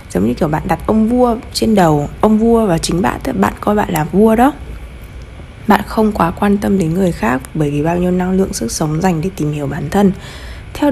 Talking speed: 235 wpm